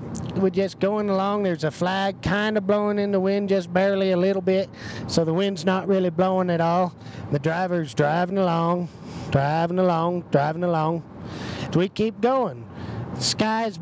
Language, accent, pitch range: English, American, 155-205 Hz